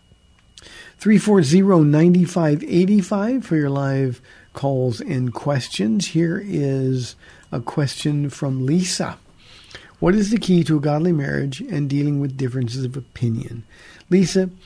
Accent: American